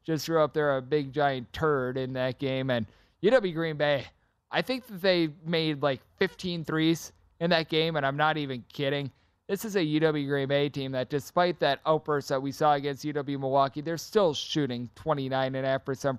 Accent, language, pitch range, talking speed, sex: American, English, 135-165 Hz, 195 wpm, male